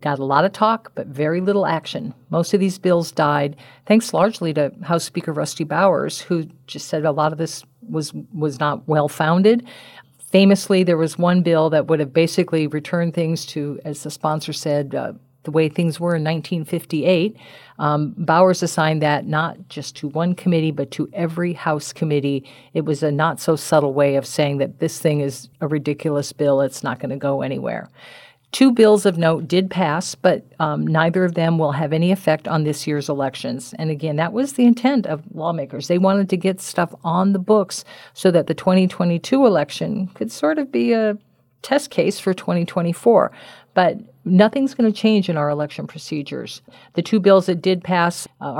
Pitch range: 145-180 Hz